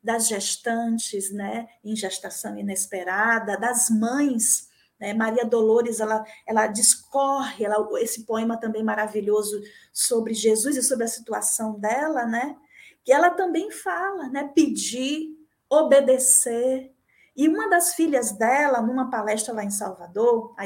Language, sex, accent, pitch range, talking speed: Portuguese, female, Brazilian, 220-300 Hz, 130 wpm